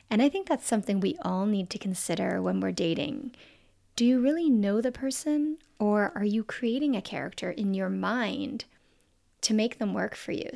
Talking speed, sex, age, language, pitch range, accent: 195 wpm, female, 30-49, English, 195-245 Hz, American